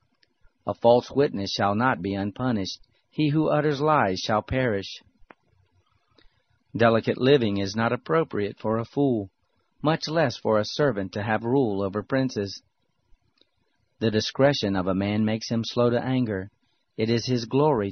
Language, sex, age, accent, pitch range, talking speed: Spanish, male, 40-59, American, 100-125 Hz, 150 wpm